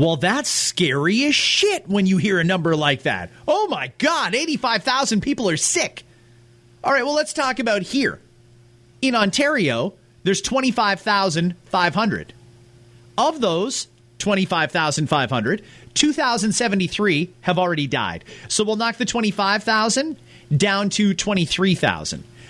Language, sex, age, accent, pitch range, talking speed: English, male, 30-49, American, 180-250 Hz, 120 wpm